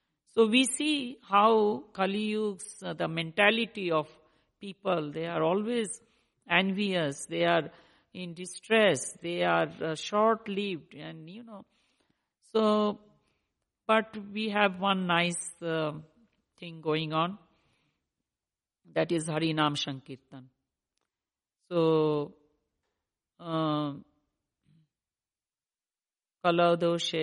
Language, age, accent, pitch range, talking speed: English, 50-69, Indian, 150-180 Hz, 95 wpm